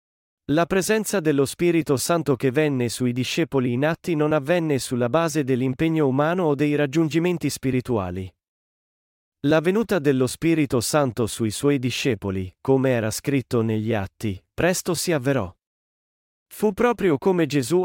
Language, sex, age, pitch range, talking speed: Italian, male, 40-59, 125-165 Hz, 140 wpm